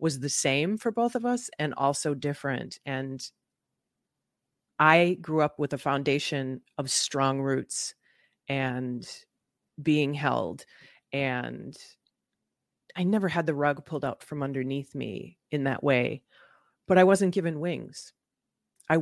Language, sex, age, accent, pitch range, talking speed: English, female, 40-59, American, 140-175 Hz, 135 wpm